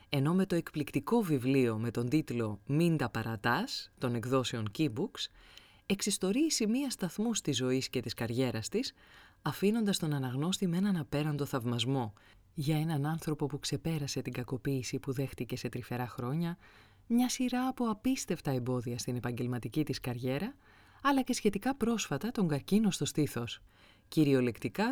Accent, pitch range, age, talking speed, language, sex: native, 125-190 Hz, 20-39, 145 wpm, Greek, female